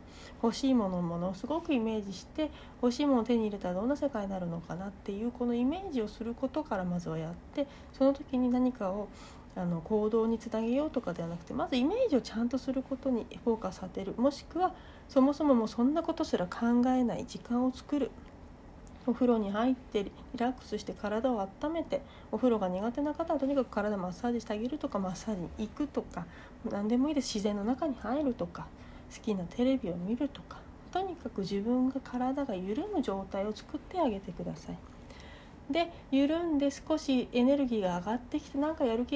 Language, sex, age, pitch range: Japanese, female, 40-59, 210-280 Hz